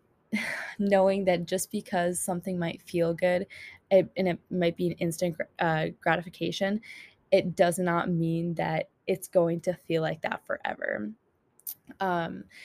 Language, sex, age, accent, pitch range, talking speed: English, female, 10-29, American, 170-195 Hz, 140 wpm